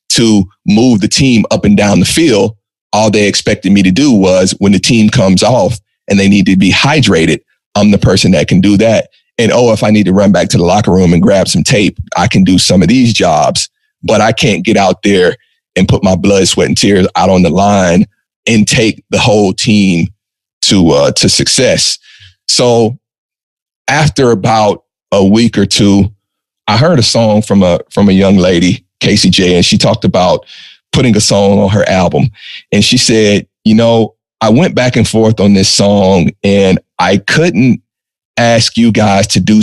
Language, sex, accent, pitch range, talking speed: English, male, American, 100-115 Hz, 200 wpm